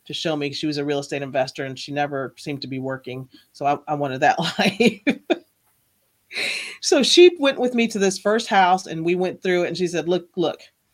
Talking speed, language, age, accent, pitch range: 225 wpm, English, 40-59, American, 150-190 Hz